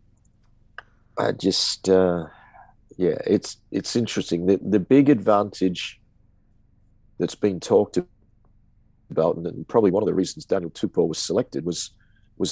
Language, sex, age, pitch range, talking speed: English, male, 50-69, 95-110 Hz, 135 wpm